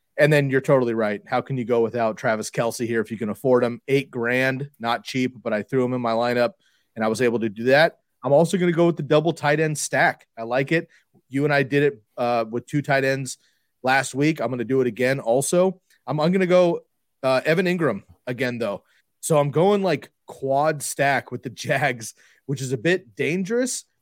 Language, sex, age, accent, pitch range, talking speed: English, male, 30-49, American, 120-150 Hz, 230 wpm